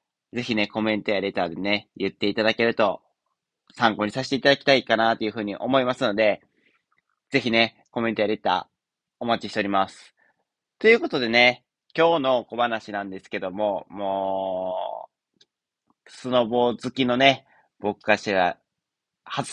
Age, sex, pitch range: 30-49, male, 100-135 Hz